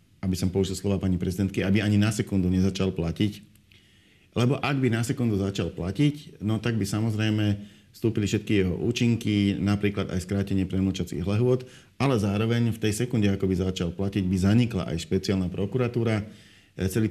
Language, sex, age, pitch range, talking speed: Slovak, male, 40-59, 95-105 Hz, 165 wpm